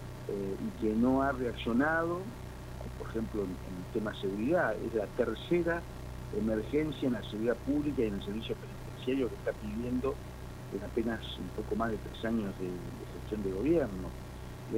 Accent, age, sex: Argentinian, 50-69, male